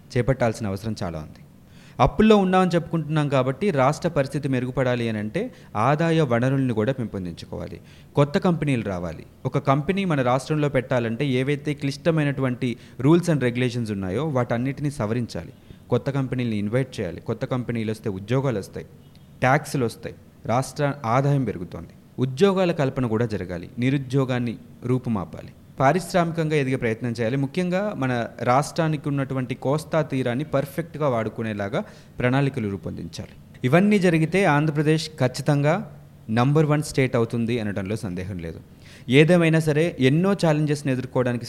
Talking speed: 120 wpm